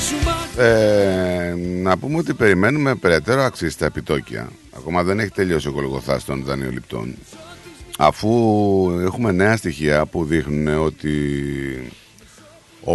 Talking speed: 115 wpm